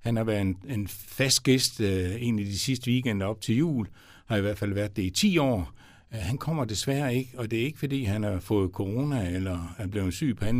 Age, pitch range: 60-79, 95-120 Hz